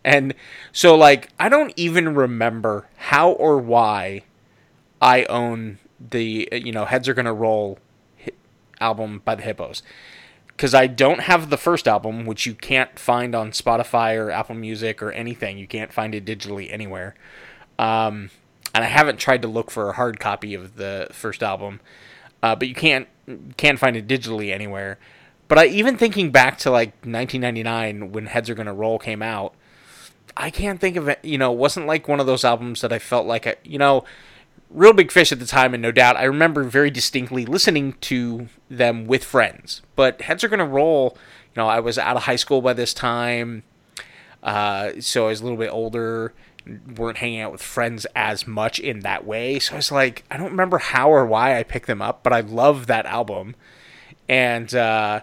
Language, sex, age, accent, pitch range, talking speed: English, male, 20-39, American, 110-135 Hz, 195 wpm